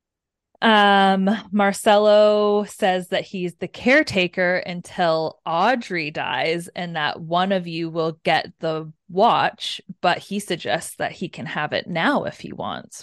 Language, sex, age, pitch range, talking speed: English, female, 20-39, 165-190 Hz, 145 wpm